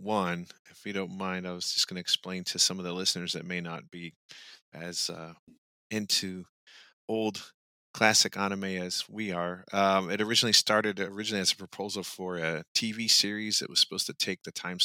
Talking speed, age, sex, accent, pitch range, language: 190 wpm, 30-49, male, American, 90-100 Hz, English